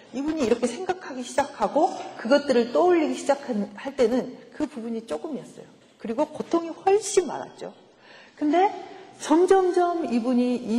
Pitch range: 215-330 Hz